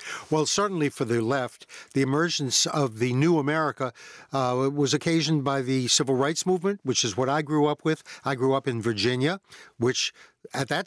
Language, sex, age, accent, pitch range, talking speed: English, male, 60-79, American, 135-165 Hz, 190 wpm